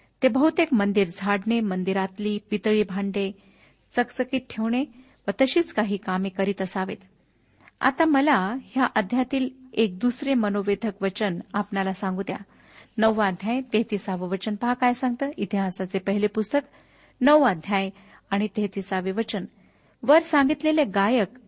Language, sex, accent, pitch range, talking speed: Marathi, female, native, 195-255 Hz, 115 wpm